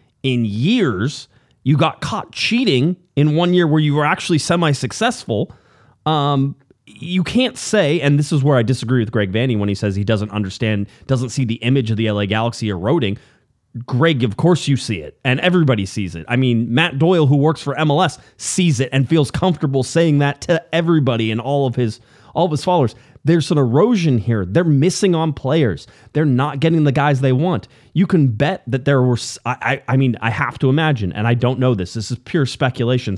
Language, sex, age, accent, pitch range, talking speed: English, male, 30-49, American, 115-150 Hz, 205 wpm